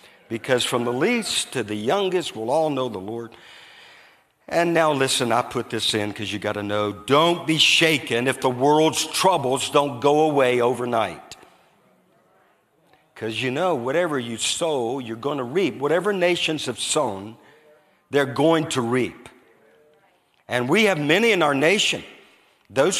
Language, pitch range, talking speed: English, 125-170 Hz, 160 wpm